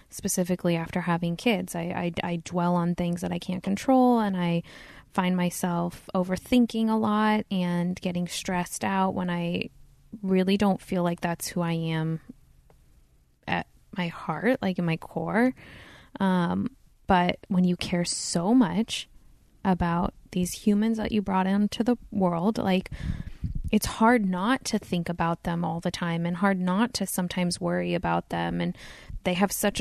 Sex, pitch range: female, 175-205 Hz